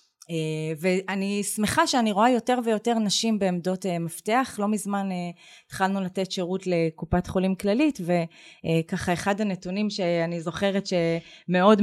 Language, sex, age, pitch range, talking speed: Hebrew, female, 20-39, 170-205 Hz, 135 wpm